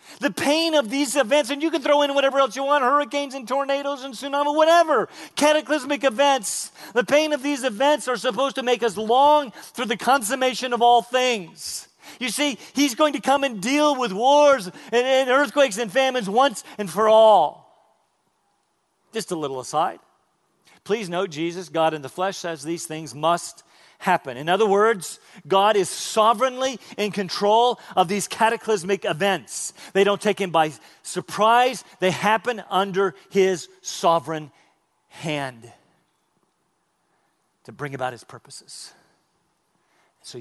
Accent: American